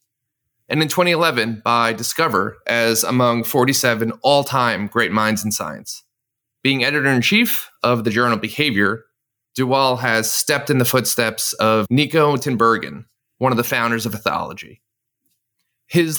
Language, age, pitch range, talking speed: English, 30-49, 110-135 Hz, 130 wpm